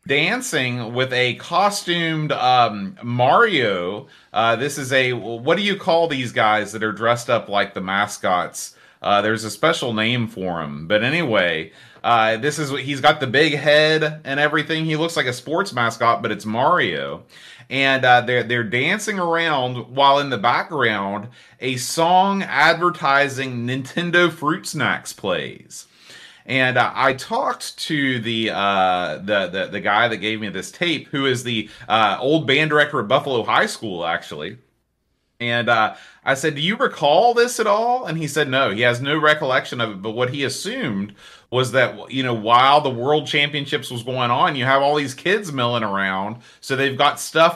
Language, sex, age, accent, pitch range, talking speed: English, male, 30-49, American, 115-150 Hz, 180 wpm